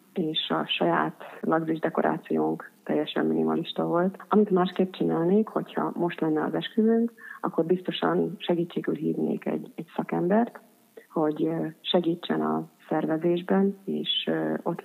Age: 30-49